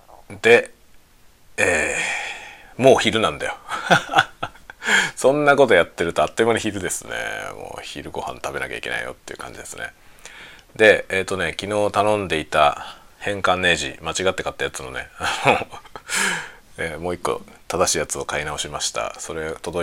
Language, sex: Japanese, male